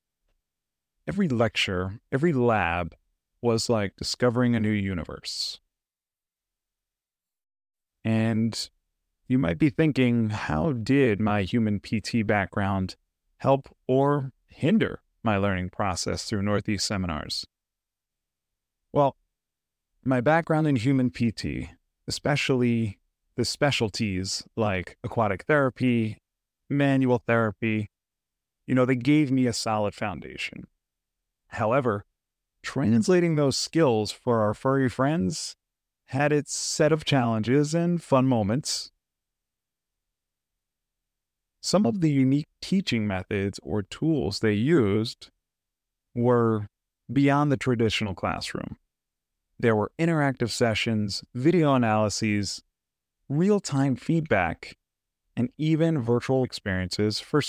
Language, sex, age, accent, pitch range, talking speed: English, male, 30-49, American, 95-135 Hz, 100 wpm